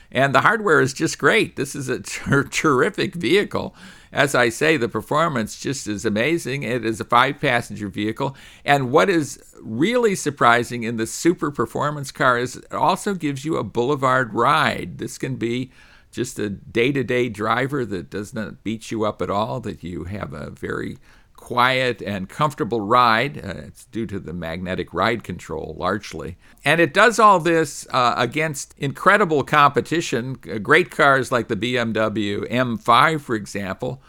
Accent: American